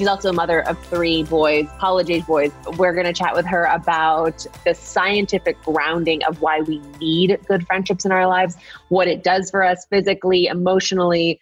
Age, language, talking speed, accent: 20-39, English, 185 wpm, American